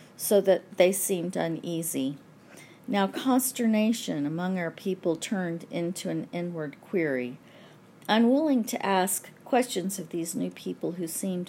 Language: English